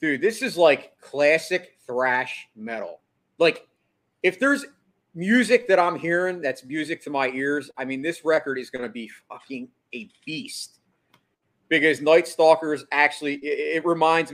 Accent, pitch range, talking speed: American, 125-160 Hz, 150 wpm